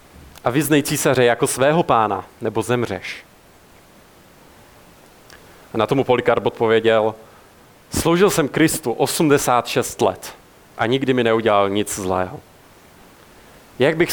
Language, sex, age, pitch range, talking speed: Czech, male, 40-59, 110-140 Hz, 110 wpm